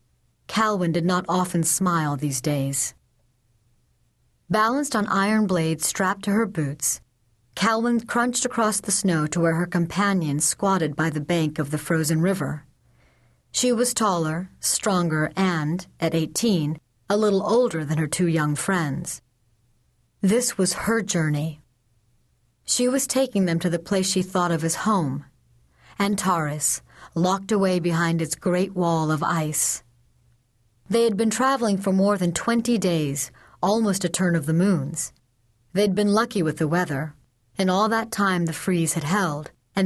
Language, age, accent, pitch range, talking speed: English, 50-69, American, 150-200 Hz, 155 wpm